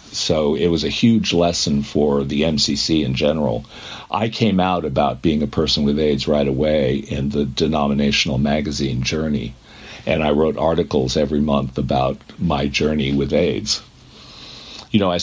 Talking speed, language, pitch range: 160 wpm, English, 70-90 Hz